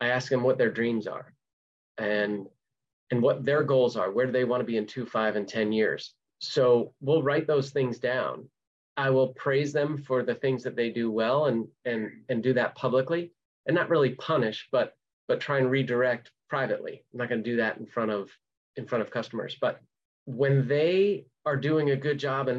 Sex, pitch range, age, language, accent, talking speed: male, 110-135 Hz, 30-49, English, American, 215 wpm